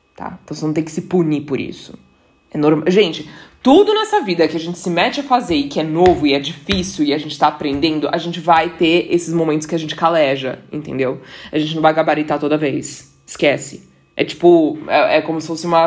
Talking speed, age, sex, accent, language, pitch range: 235 wpm, 20-39, female, Brazilian, Portuguese, 160-195 Hz